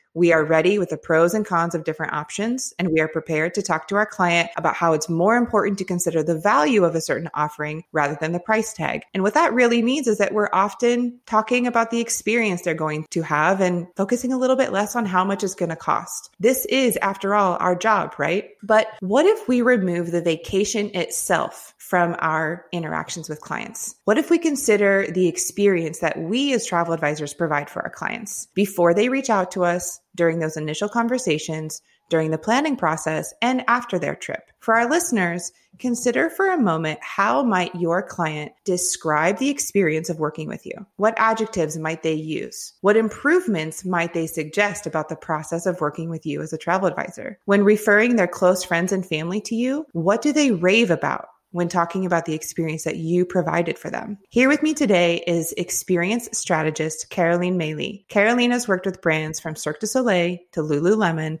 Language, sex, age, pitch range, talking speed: English, female, 30-49, 160-215 Hz, 200 wpm